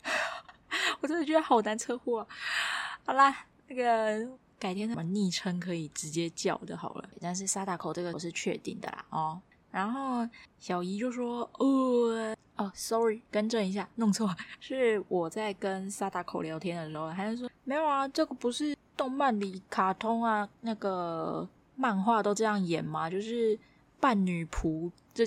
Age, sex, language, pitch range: 20-39, female, Chinese, 175-225 Hz